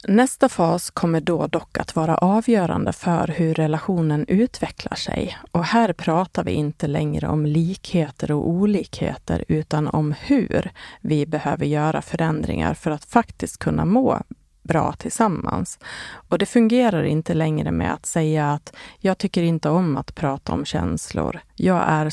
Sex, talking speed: female, 150 wpm